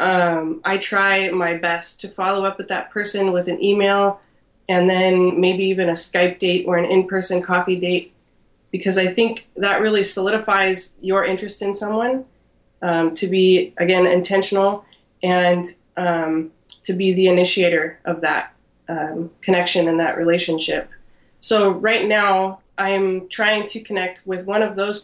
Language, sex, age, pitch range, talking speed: English, female, 20-39, 175-195 Hz, 160 wpm